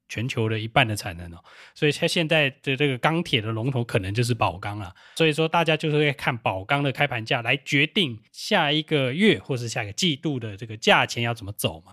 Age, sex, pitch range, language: 20-39, male, 115-150 Hz, Chinese